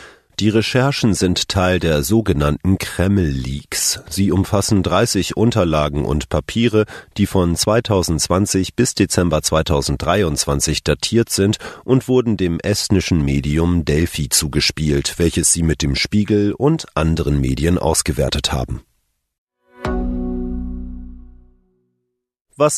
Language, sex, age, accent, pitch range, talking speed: German, male, 40-59, German, 75-100 Hz, 105 wpm